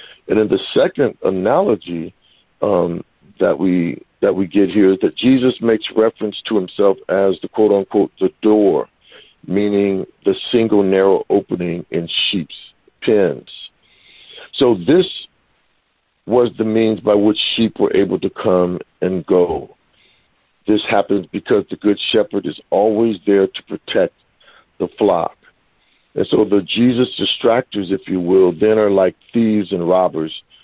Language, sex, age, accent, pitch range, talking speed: English, male, 60-79, American, 95-110 Hz, 140 wpm